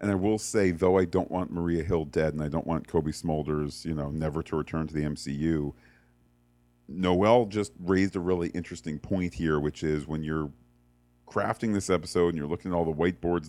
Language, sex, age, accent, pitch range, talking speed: English, male, 40-59, American, 75-95 Hz, 210 wpm